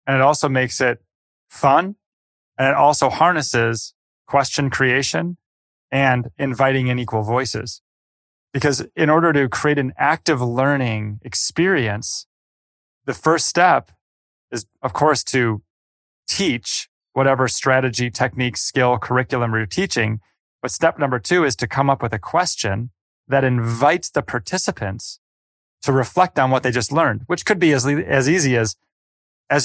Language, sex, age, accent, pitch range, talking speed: English, male, 20-39, American, 115-140 Hz, 145 wpm